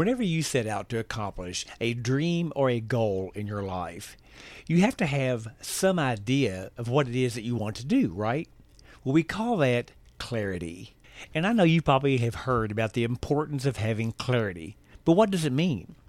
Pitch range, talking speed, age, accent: 110-155 Hz, 200 wpm, 50-69, American